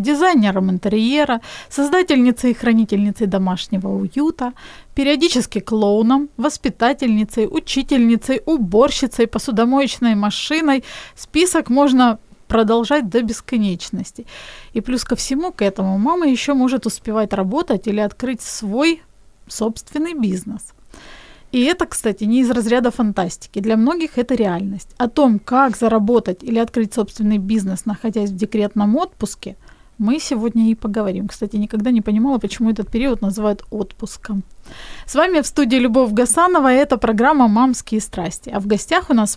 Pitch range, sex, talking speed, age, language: 210-270 Hz, female, 135 wpm, 20-39, Ukrainian